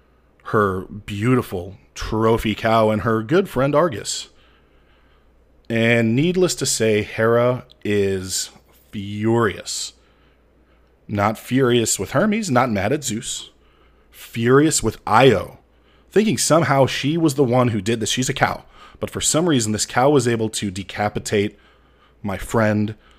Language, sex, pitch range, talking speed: English, male, 100-120 Hz, 130 wpm